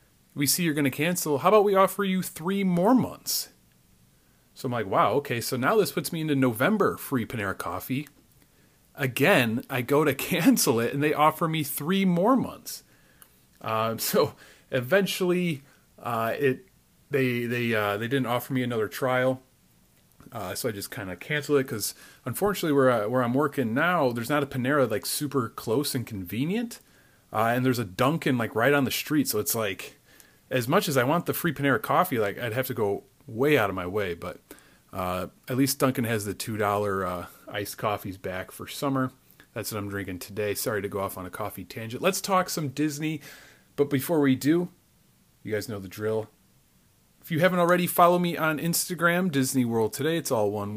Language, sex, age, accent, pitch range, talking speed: English, male, 30-49, American, 115-160 Hz, 195 wpm